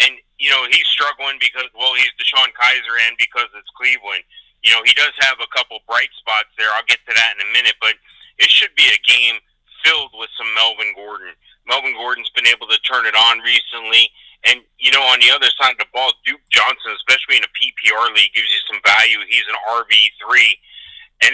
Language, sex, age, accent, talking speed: English, male, 30-49, American, 215 wpm